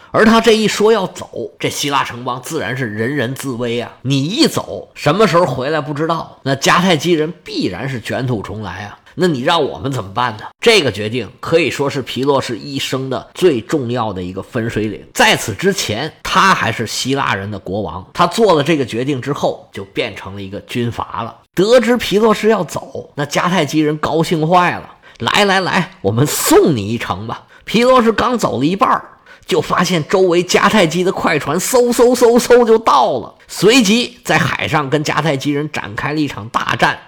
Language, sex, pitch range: Chinese, male, 120-180 Hz